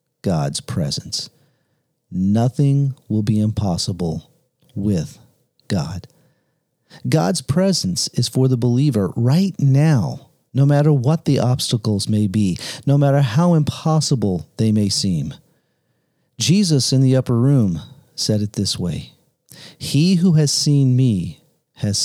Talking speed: 120 wpm